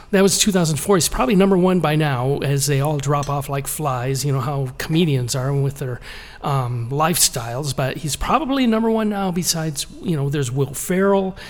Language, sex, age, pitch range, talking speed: English, male, 40-59, 140-185 Hz, 195 wpm